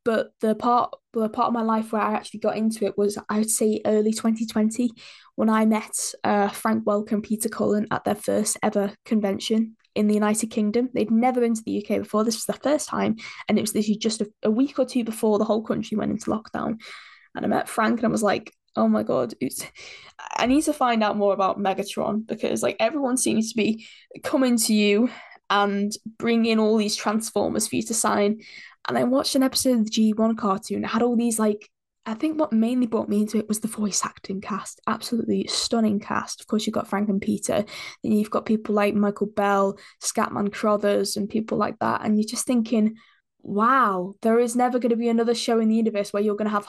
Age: 10-29